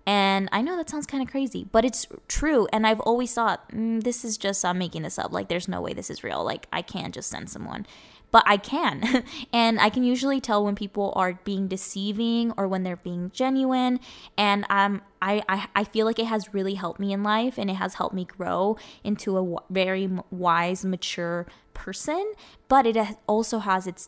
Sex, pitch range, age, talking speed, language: female, 185-225 Hz, 10-29, 215 wpm, English